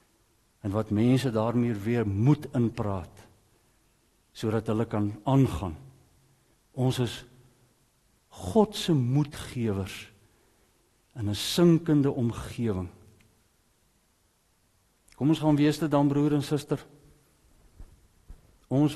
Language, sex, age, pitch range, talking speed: English, male, 60-79, 110-145 Hz, 95 wpm